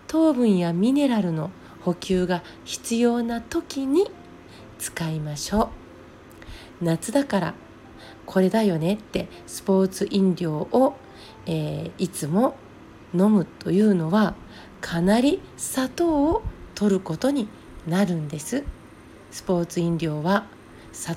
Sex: female